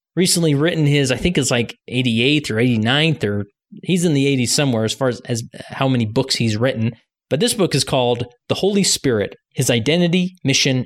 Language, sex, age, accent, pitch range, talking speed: English, male, 30-49, American, 115-145 Hz, 200 wpm